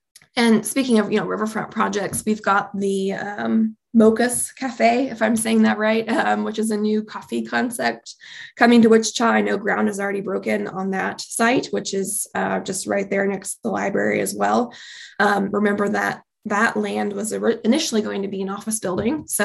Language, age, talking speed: English, 20-39, 195 wpm